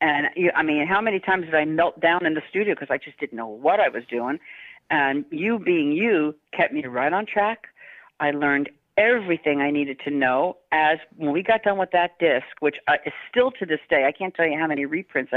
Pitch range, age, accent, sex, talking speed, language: 145-185 Hz, 50-69, American, female, 230 wpm, English